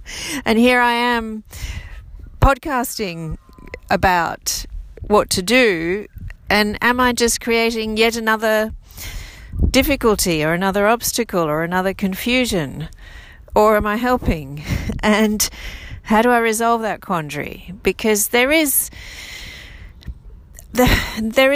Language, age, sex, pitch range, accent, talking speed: English, 40-59, female, 160-220 Hz, Australian, 105 wpm